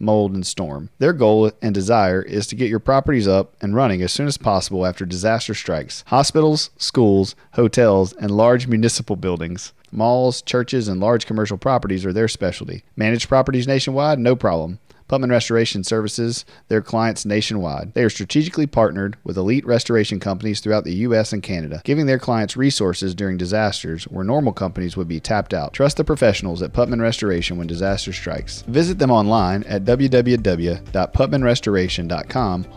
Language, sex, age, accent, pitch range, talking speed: English, male, 40-59, American, 90-115 Hz, 165 wpm